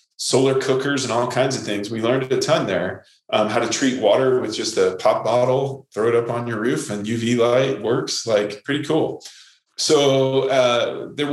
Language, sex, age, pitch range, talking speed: English, male, 20-39, 110-130 Hz, 200 wpm